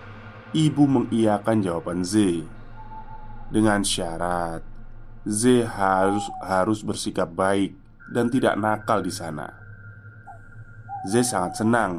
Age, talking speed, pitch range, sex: 20-39, 95 wpm, 100-120 Hz, male